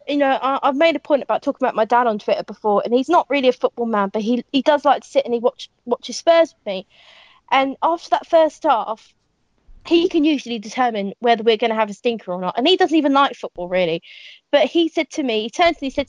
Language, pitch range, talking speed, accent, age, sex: English, 225-290 Hz, 260 wpm, British, 20-39, female